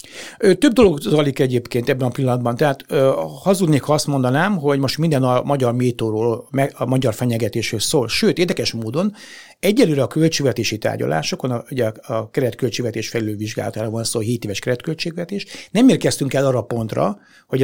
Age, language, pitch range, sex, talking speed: 60-79, Hungarian, 125-165 Hz, male, 155 wpm